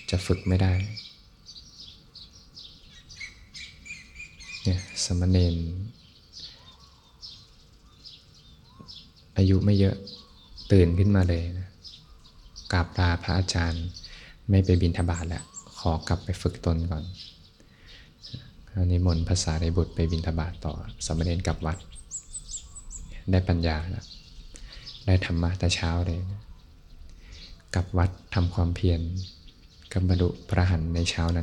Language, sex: Thai, male